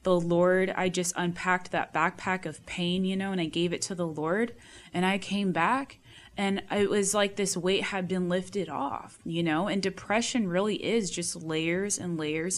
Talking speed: 200 wpm